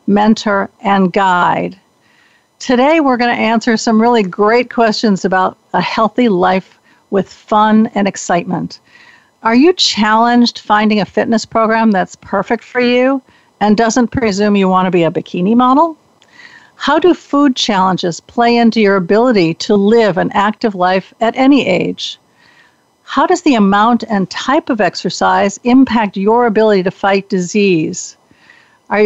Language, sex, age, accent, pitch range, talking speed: English, female, 50-69, American, 195-240 Hz, 150 wpm